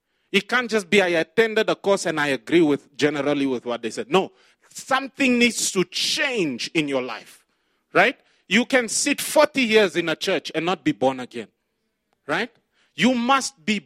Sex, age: male, 30-49